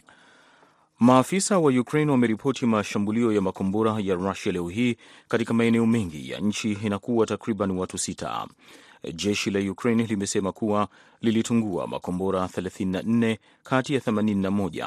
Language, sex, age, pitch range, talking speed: Swahili, male, 30-49, 100-115 Hz, 120 wpm